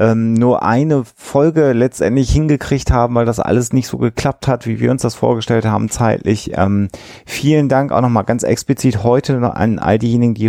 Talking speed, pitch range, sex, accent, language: 185 wpm, 95-125 Hz, male, German, German